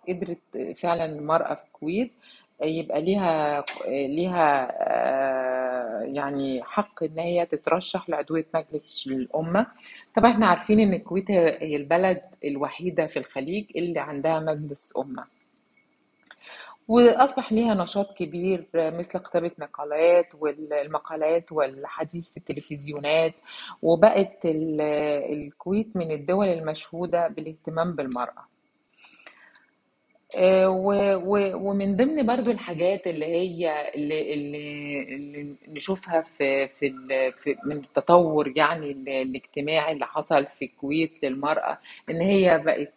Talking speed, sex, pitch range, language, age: 100 wpm, female, 150-185 Hz, Arabic, 30-49